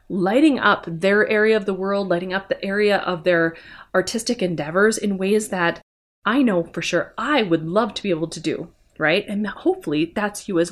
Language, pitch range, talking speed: English, 175-235 Hz, 200 wpm